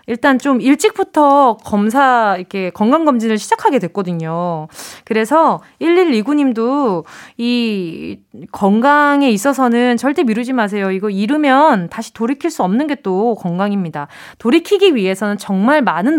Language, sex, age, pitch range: Korean, female, 20-39, 215-315 Hz